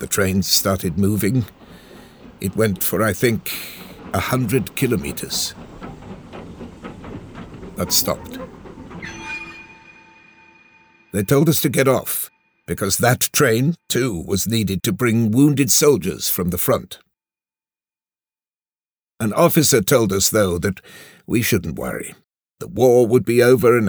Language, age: English, 60-79